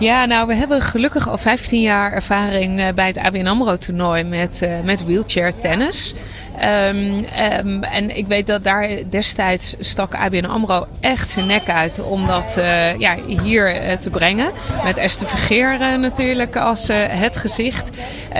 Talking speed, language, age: 155 wpm, Dutch, 20-39